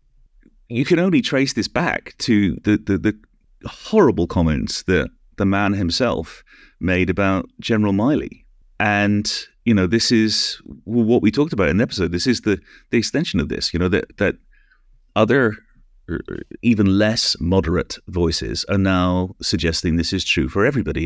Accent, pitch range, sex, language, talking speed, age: British, 80-105 Hz, male, English, 160 wpm, 30-49